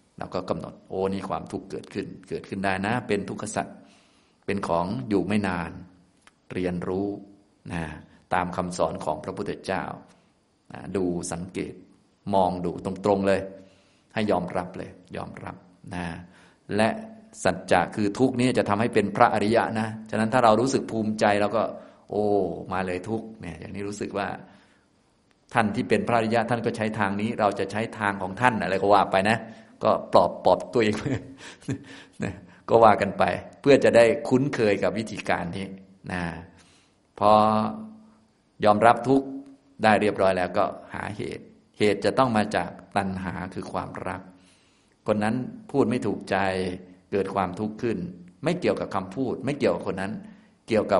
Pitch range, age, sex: 90-110 Hz, 20-39, male